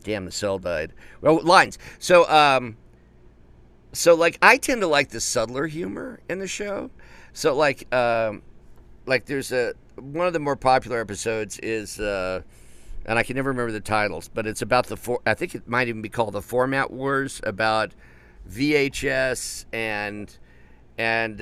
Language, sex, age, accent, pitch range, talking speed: English, male, 50-69, American, 105-140 Hz, 170 wpm